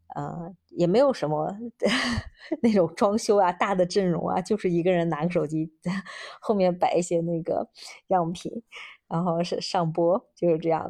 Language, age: Chinese, 20-39